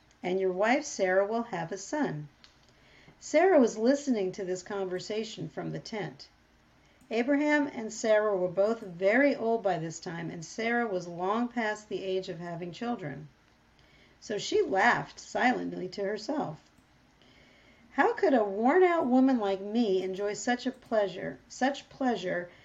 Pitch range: 190-260 Hz